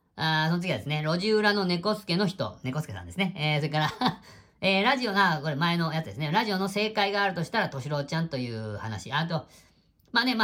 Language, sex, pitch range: Japanese, female, 110-170 Hz